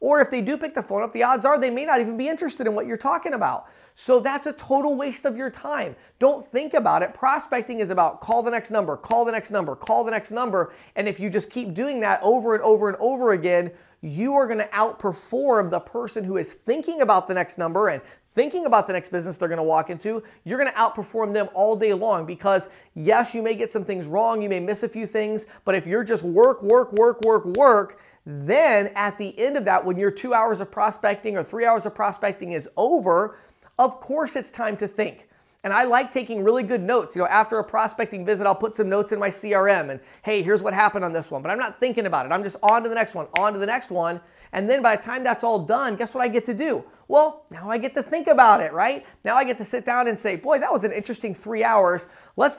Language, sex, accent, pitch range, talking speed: English, male, American, 200-250 Hz, 265 wpm